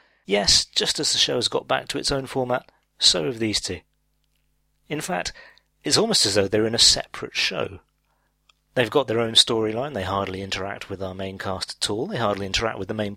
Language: English